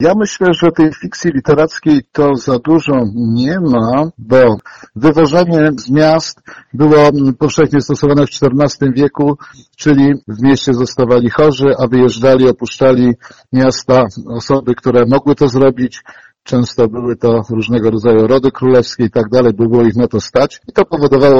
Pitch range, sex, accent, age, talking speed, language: 120-145 Hz, male, native, 50-69, 150 wpm, Polish